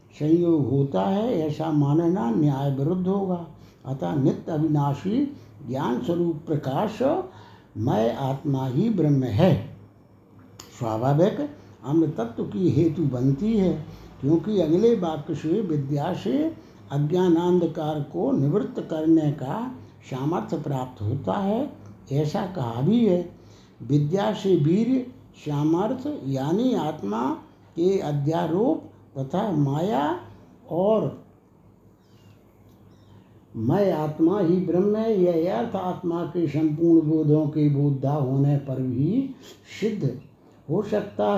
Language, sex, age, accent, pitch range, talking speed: Hindi, male, 60-79, native, 135-180 Hz, 105 wpm